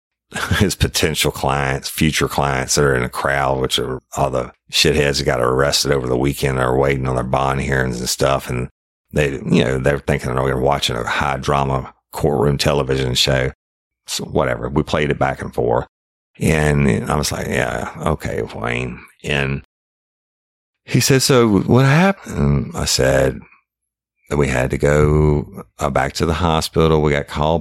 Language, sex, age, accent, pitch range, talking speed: English, male, 50-69, American, 65-80 Hz, 175 wpm